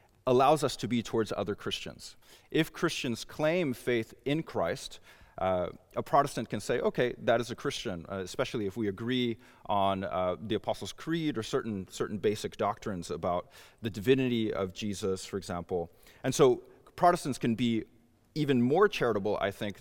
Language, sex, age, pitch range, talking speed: English, male, 30-49, 100-130 Hz, 165 wpm